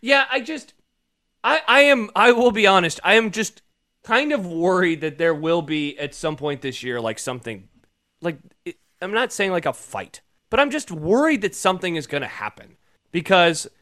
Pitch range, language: 145-220 Hz, English